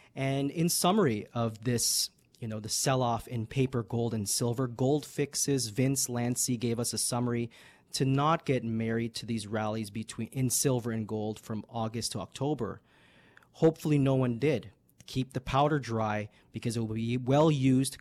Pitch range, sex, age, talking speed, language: 115-140 Hz, male, 30-49, 175 wpm, English